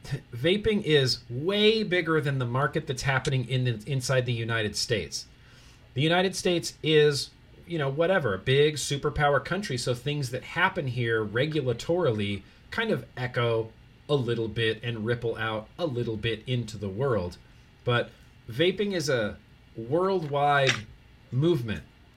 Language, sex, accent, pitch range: English, male, American, 115-140 Hz